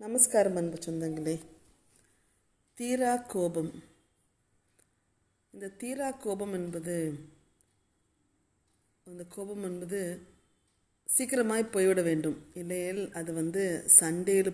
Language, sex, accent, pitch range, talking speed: Tamil, female, native, 155-195 Hz, 80 wpm